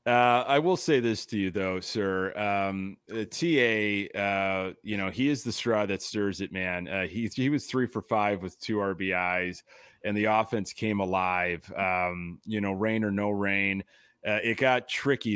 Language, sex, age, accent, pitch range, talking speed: English, male, 30-49, American, 95-125 Hz, 190 wpm